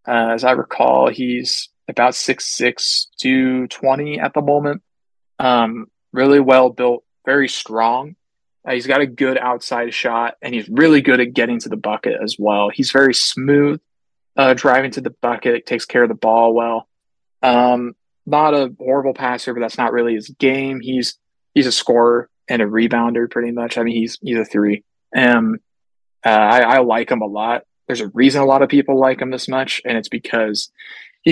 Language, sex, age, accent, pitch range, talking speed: English, male, 20-39, American, 115-135 Hz, 190 wpm